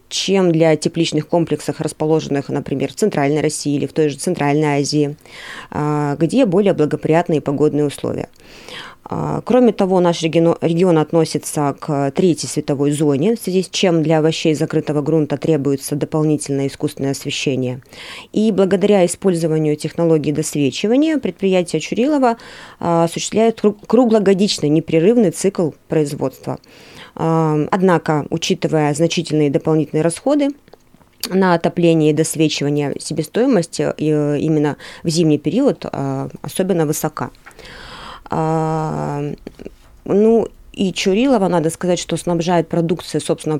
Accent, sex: native, female